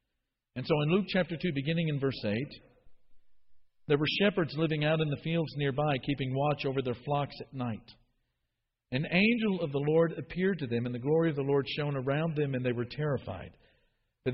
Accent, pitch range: American, 120-160 Hz